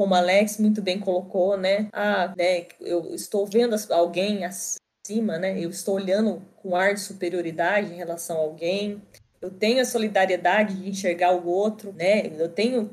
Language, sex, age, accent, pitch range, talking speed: Portuguese, female, 20-39, Brazilian, 180-225 Hz, 170 wpm